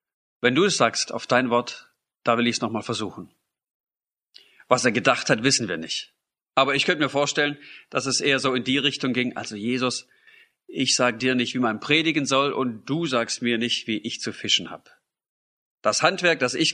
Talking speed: 205 wpm